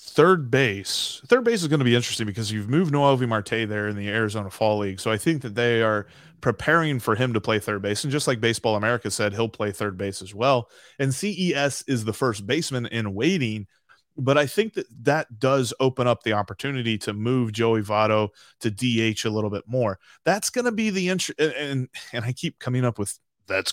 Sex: male